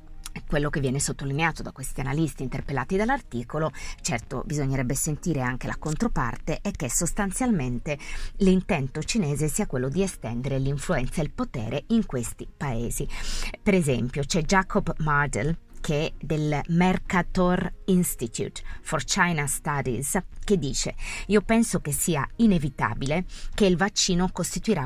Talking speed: 135 wpm